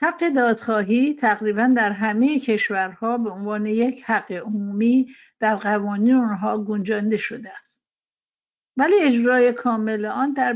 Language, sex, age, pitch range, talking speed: Persian, female, 60-79, 205-255 Hz, 125 wpm